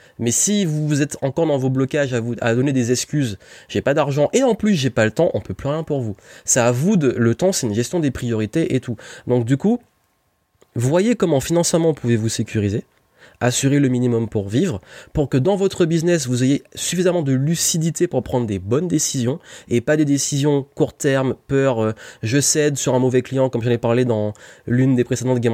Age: 20-39